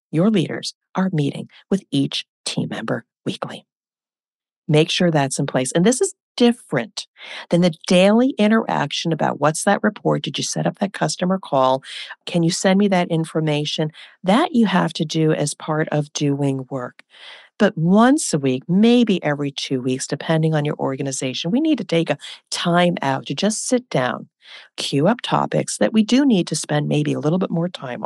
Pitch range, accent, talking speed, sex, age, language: 155-210 Hz, American, 185 wpm, female, 50-69, English